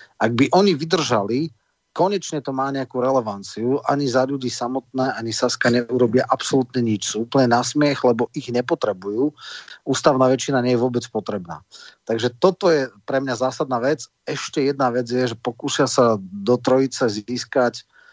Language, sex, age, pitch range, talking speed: Slovak, male, 40-59, 115-135 Hz, 155 wpm